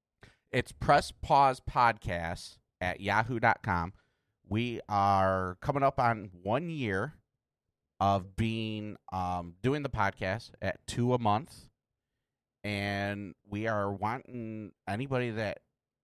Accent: American